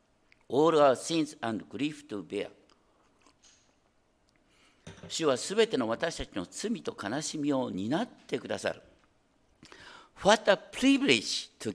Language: Japanese